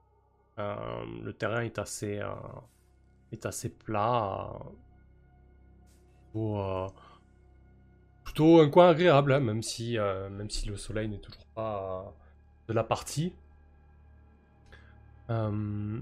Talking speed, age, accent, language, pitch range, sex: 100 wpm, 20-39, French, French, 95-130 Hz, male